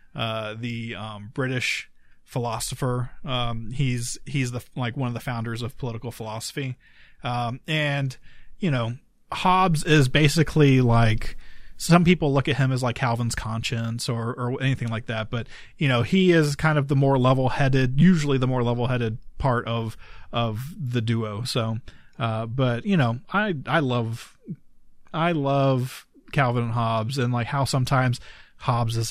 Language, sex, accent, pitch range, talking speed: English, male, American, 120-140 Hz, 165 wpm